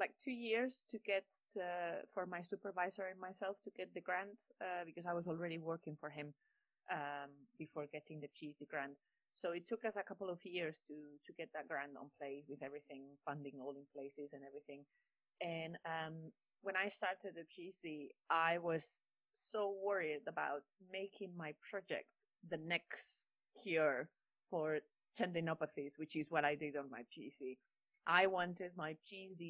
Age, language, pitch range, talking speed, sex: 30-49, English, 155-195 Hz, 170 wpm, female